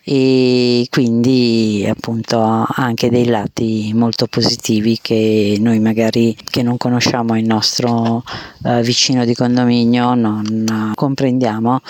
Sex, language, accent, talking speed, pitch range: female, Italian, native, 110 wpm, 115-140 Hz